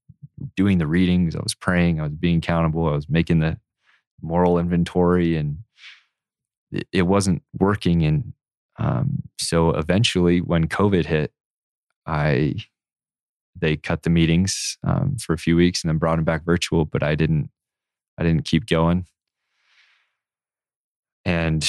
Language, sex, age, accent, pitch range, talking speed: English, male, 20-39, American, 80-90 Hz, 140 wpm